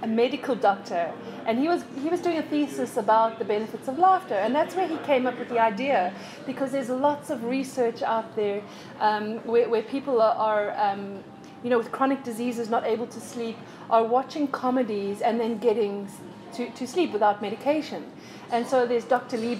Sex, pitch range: female, 220-265 Hz